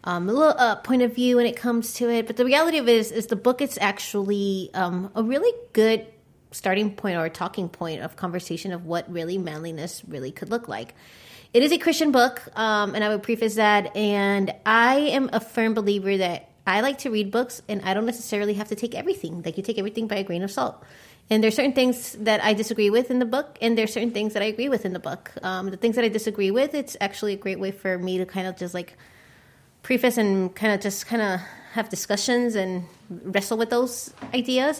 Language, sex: English, female